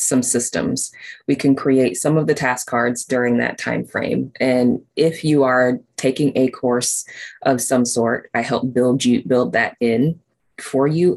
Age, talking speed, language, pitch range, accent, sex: 20-39, 175 wpm, English, 120-135 Hz, American, female